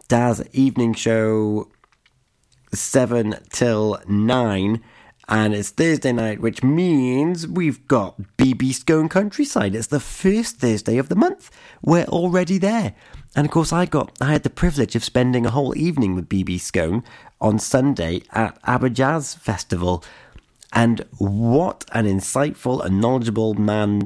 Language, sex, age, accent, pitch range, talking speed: English, male, 30-49, British, 105-135 Hz, 140 wpm